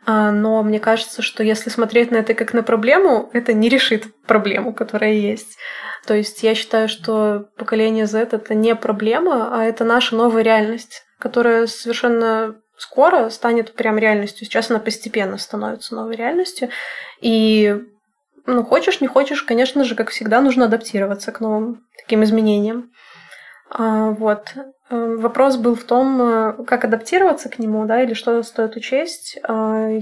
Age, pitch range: 20-39, 220-245 Hz